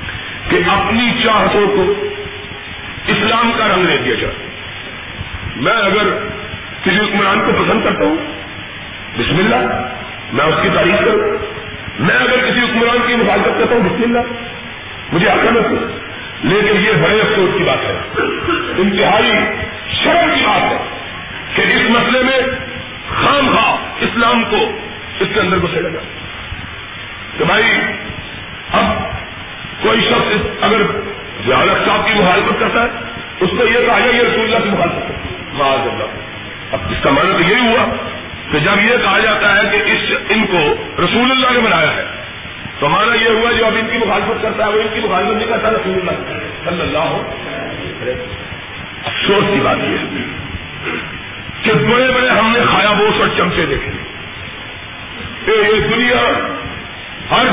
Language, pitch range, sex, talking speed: Urdu, 195-240 Hz, male, 140 wpm